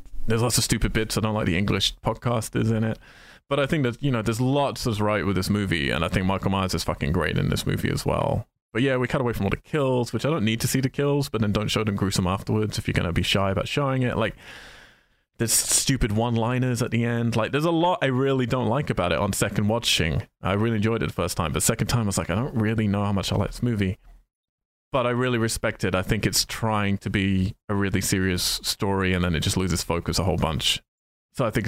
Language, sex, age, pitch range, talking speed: English, male, 20-39, 95-120 Hz, 265 wpm